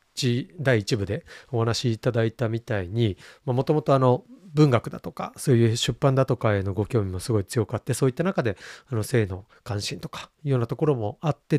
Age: 40-59